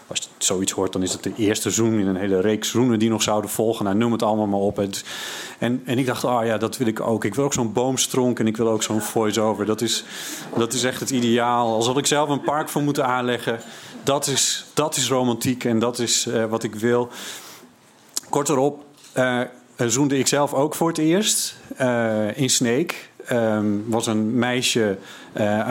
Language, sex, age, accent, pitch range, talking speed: Dutch, male, 40-59, Dutch, 110-130 Hz, 215 wpm